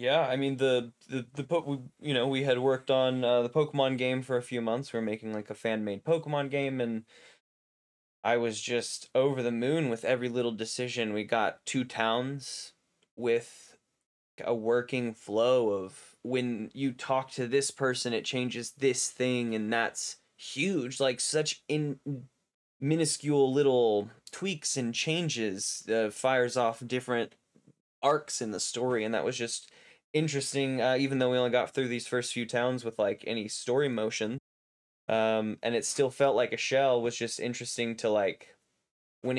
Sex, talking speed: male, 170 wpm